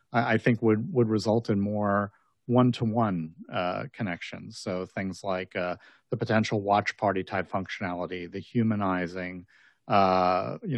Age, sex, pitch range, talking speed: 40-59, male, 95-120 Hz, 145 wpm